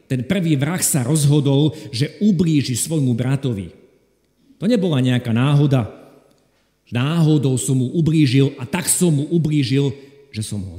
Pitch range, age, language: 120-165 Hz, 50-69, Slovak